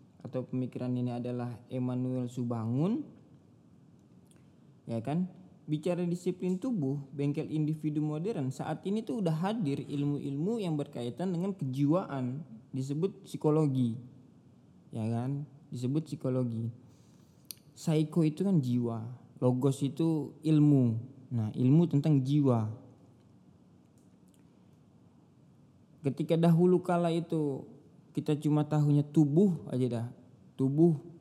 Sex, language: male, Indonesian